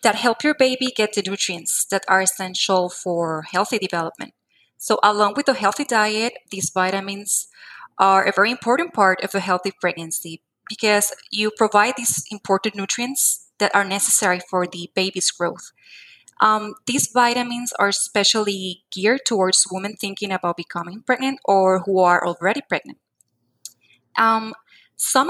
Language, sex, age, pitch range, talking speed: English, female, 20-39, 185-230 Hz, 145 wpm